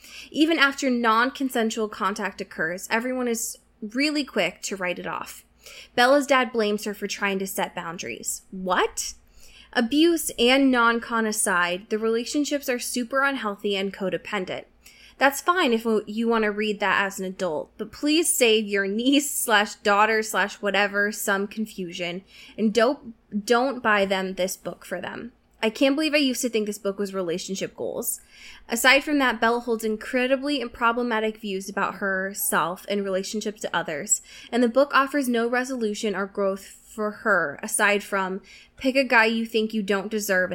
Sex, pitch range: female, 195-245 Hz